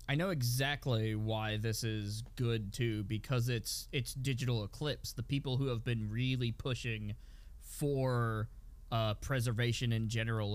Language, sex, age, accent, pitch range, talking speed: English, male, 20-39, American, 110-140 Hz, 140 wpm